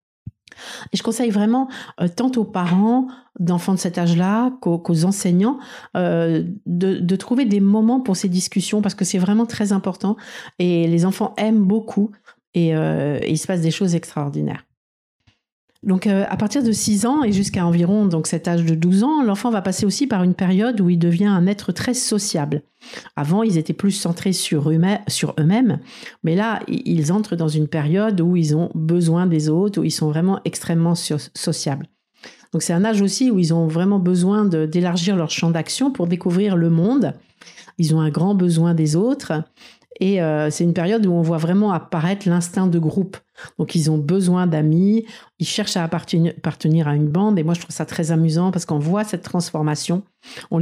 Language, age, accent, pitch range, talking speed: French, 50-69, French, 160-200 Hz, 200 wpm